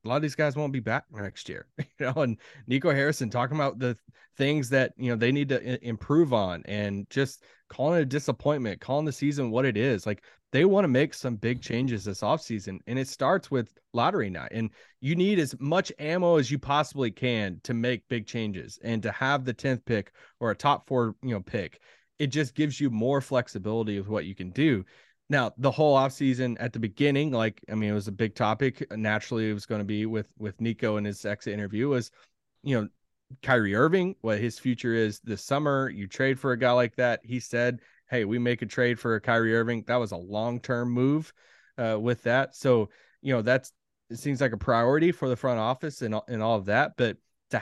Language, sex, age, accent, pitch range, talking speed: English, male, 20-39, American, 110-135 Hz, 220 wpm